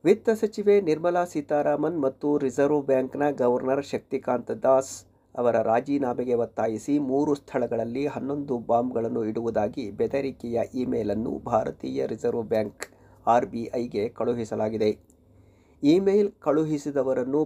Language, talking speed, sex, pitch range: Kannada, 95 wpm, male, 120-150 Hz